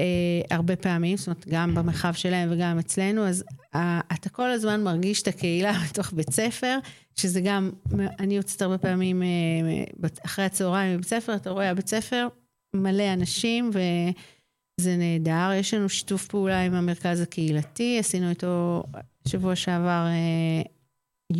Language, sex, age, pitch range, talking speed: Hebrew, female, 40-59, 170-195 Hz, 145 wpm